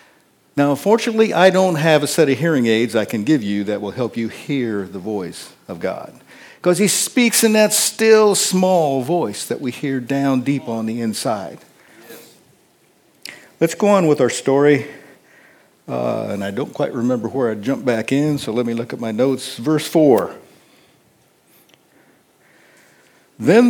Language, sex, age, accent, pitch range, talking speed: English, male, 60-79, American, 130-200 Hz, 165 wpm